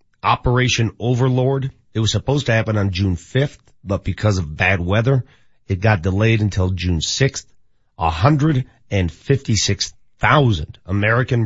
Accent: American